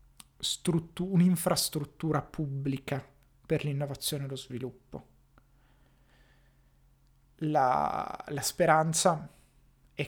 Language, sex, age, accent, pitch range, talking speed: Italian, male, 30-49, native, 130-150 Hz, 65 wpm